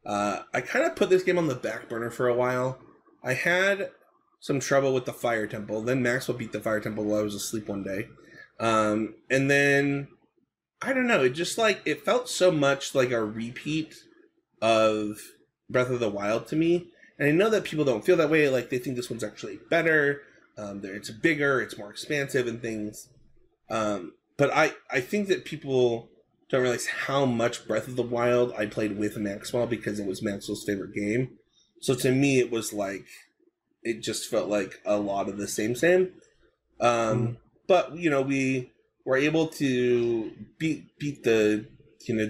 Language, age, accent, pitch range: English, 20-39, American, 110-140 Hz